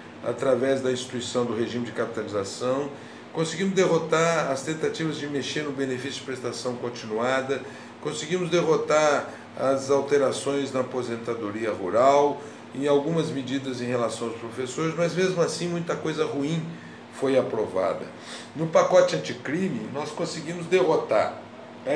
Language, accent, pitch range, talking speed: Portuguese, Brazilian, 135-175 Hz, 130 wpm